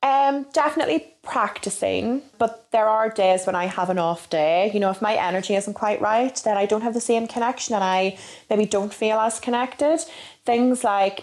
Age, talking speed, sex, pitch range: 20-39, 200 wpm, female, 190-230 Hz